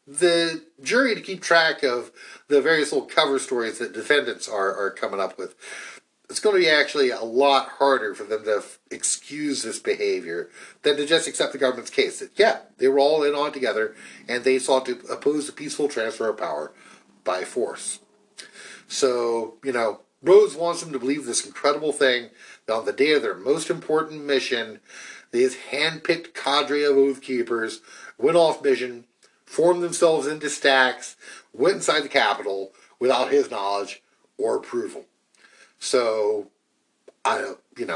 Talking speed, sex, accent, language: 165 wpm, male, American, English